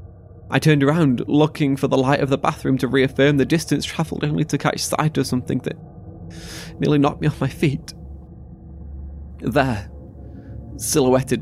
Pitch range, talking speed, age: 100-130 Hz, 160 wpm, 20-39